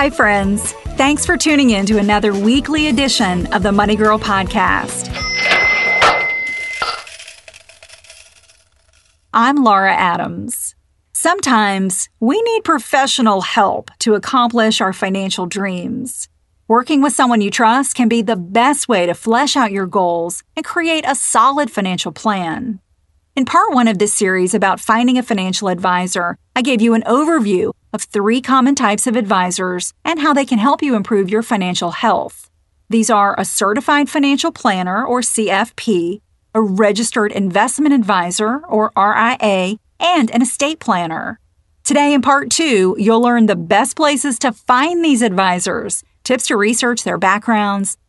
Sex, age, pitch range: female, 40-59, 200-270 Hz